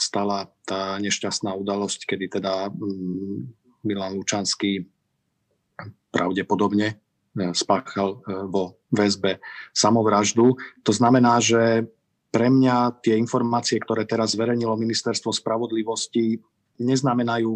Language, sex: Slovak, male